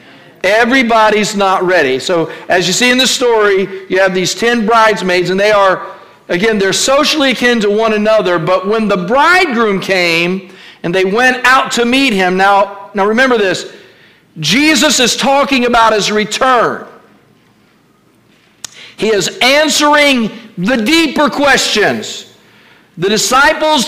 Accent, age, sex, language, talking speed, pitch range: American, 50-69, male, English, 140 wpm, 195-270 Hz